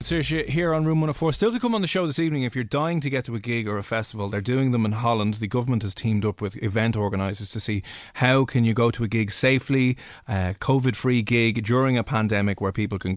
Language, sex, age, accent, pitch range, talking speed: English, male, 20-39, Irish, 105-145 Hz, 260 wpm